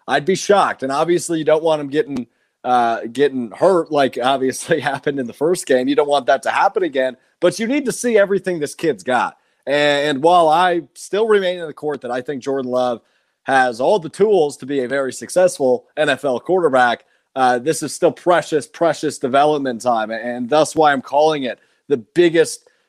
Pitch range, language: 130-175 Hz, English